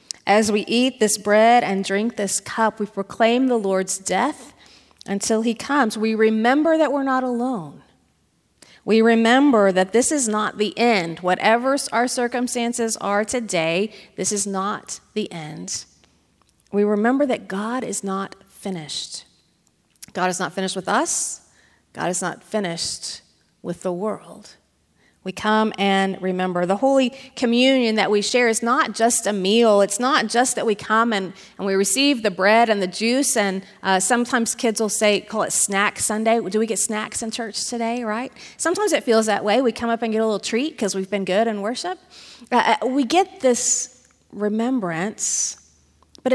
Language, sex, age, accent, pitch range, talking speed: English, female, 30-49, American, 195-245 Hz, 175 wpm